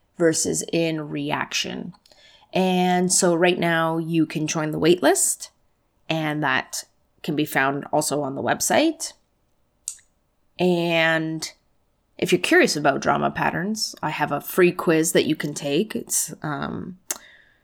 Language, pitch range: English, 160-215 Hz